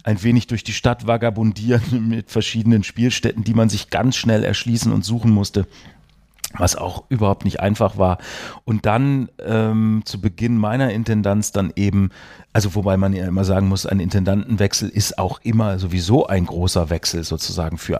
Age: 40-59